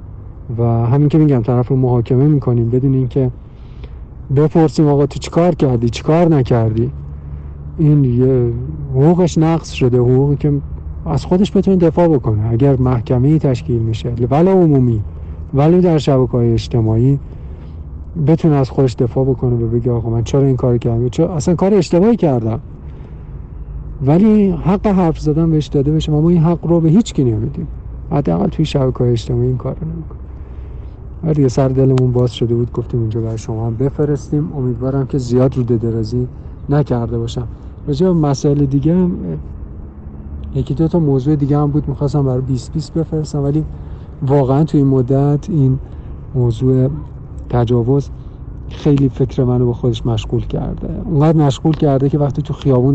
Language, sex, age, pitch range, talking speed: Persian, male, 50-69, 120-150 Hz, 155 wpm